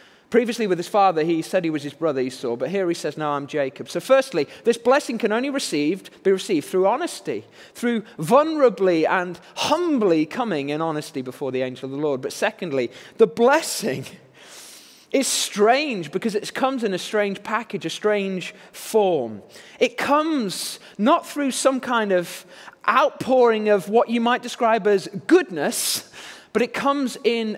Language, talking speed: English, 165 wpm